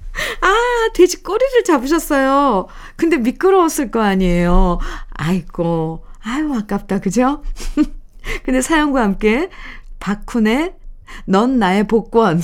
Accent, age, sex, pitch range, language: native, 50-69, female, 175-255 Hz, Korean